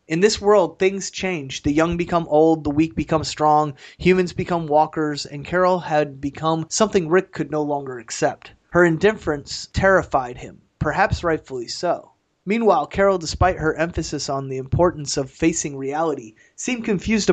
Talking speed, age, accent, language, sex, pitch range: 160 wpm, 30-49, American, English, male, 145-175 Hz